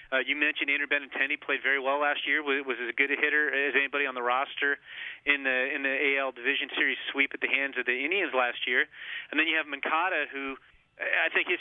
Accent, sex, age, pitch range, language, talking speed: American, male, 30-49, 130-145 Hz, English, 235 wpm